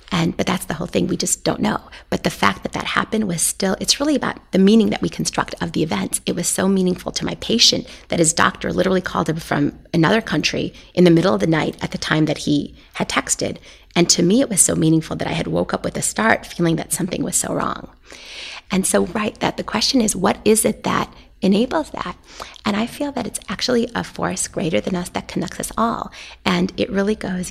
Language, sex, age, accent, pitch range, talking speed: English, female, 30-49, American, 170-220 Hz, 240 wpm